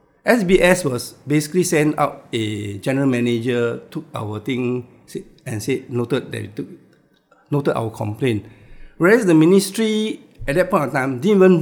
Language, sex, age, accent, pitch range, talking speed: English, male, 60-79, Malaysian, 125-160 Hz, 150 wpm